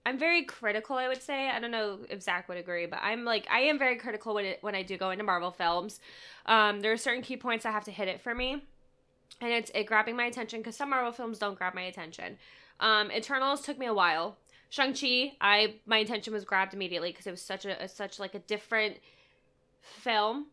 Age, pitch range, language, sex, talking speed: 20-39, 200-240 Hz, English, female, 235 wpm